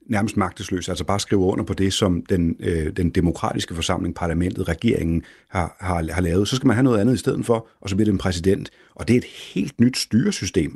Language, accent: Danish, native